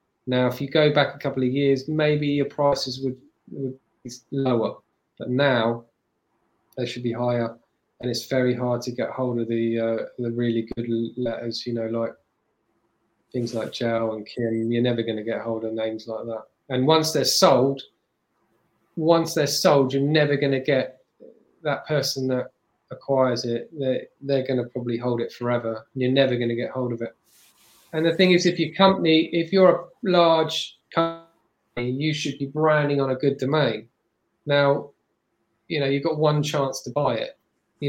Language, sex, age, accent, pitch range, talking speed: English, male, 20-39, British, 115-145 Hz, 190 wpm